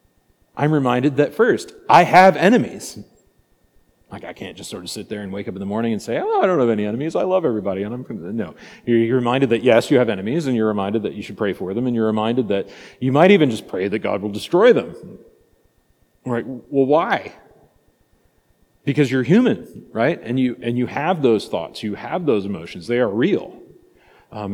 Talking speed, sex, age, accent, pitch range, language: 215 wpm, male, 40-59, American, 105-135 Hz, English